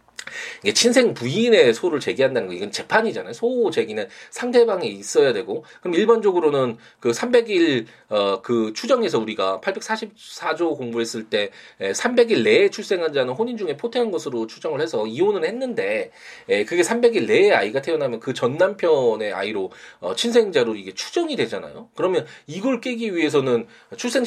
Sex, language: male, Korean